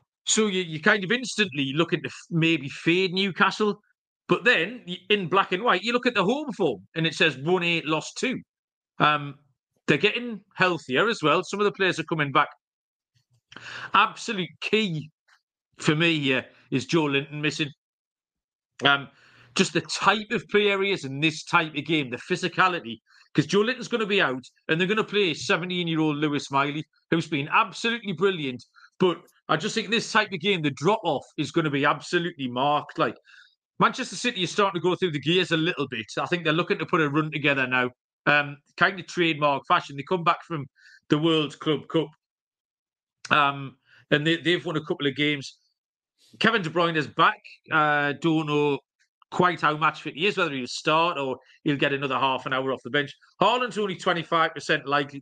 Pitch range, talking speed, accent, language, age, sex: 145-190 Hz, 195 wpm, British, English, 40-59, male